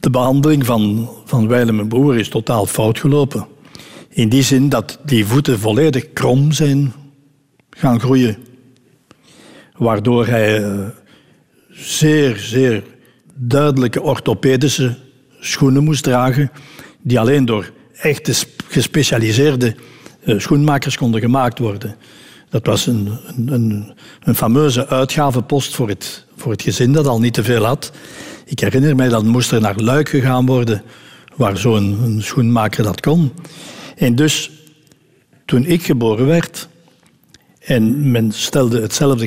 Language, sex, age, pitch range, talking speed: Dutch, male, 60-79, 115-140 Hz, 125 wpm